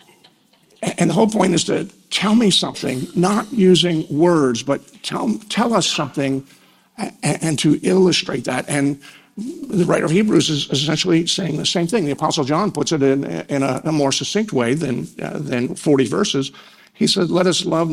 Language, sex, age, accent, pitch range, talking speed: English, male, 50-69, American, 140-195 Hz, 185 wpm